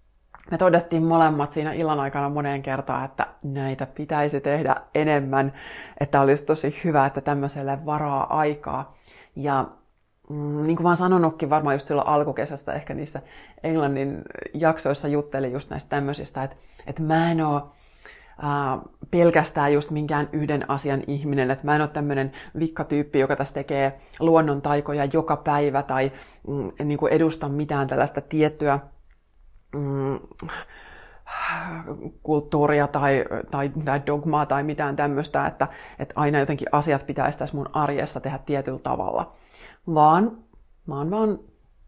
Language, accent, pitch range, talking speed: Finnish, native, 140-150 Hz, 140 wpm